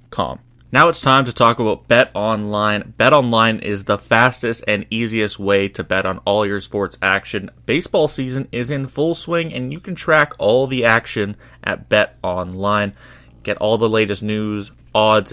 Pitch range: 100-120 Hz